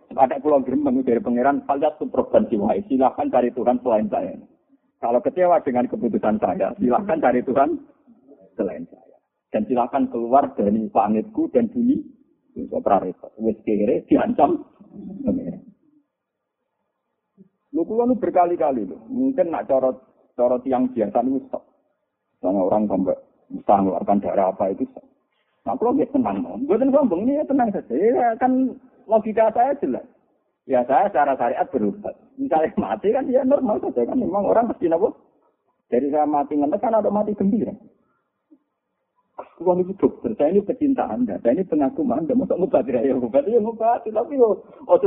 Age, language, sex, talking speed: 50-69, Indonesian, male, 155 wpm